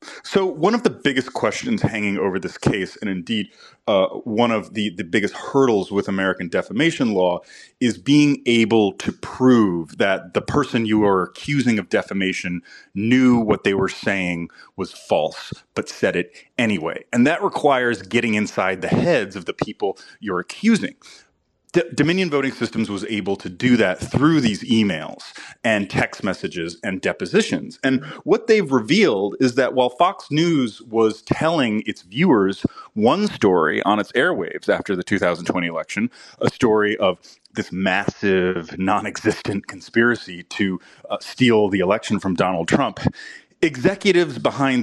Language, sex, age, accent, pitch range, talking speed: English, male, 30-49, American, 100-145 Hz, 155 wpm